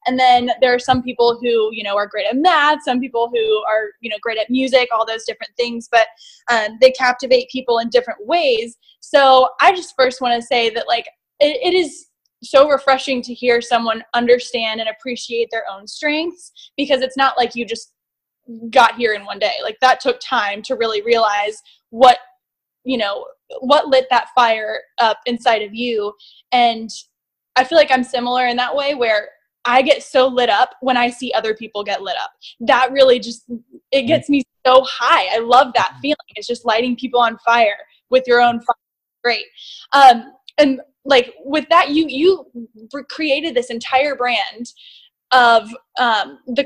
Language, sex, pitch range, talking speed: English, female, 230-275 Hz, 185 wpm